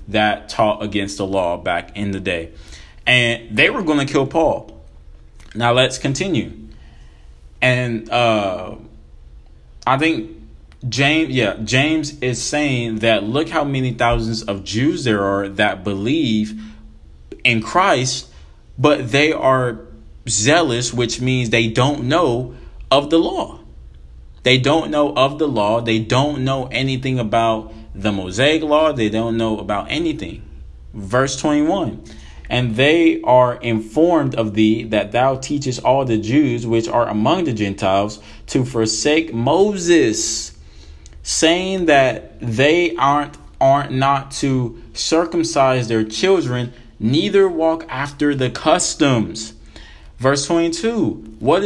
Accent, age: American, 20-39